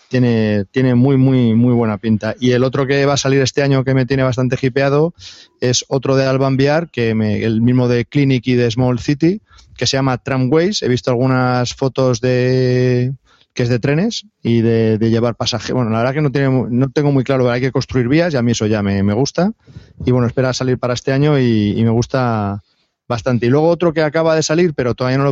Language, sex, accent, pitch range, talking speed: Spanish, male, Spanish, 120-140 Hz, 230 wpm